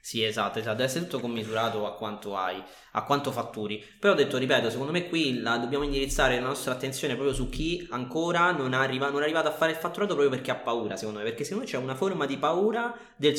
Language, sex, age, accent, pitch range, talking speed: Italian, male, 20-39, native, 115-150 Hz, 240 wpm